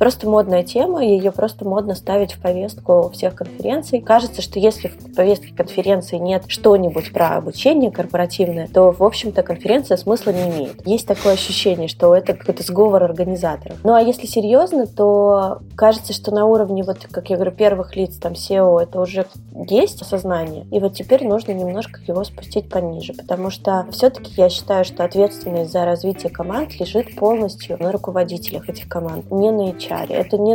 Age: 20-39